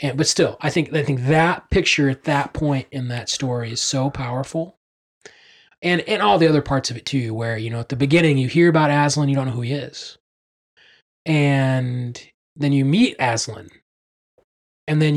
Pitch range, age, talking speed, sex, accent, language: 125-155 Hz, 20-39, 200 wpm, male, American, English